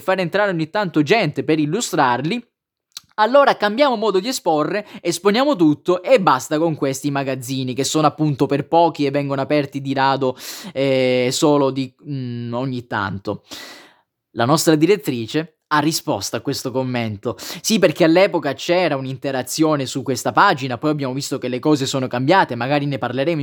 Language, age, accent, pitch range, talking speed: Italian, 20-39, native, 135-180 Hz, 160 wpm